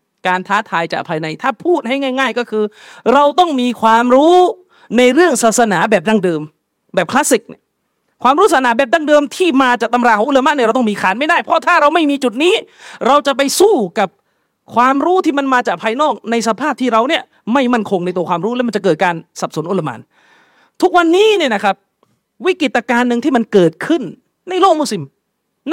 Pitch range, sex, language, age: 220-300 Hz, male, Thai, 30-49